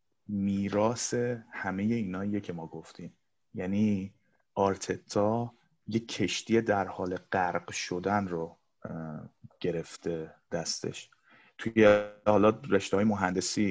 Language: Persian